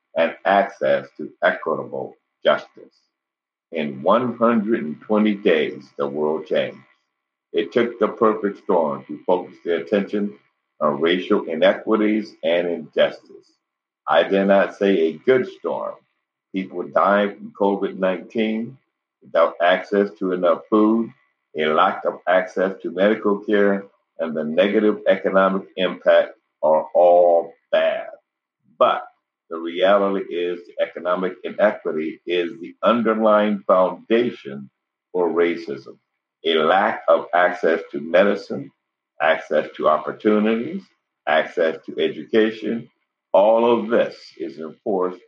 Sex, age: male, 60-79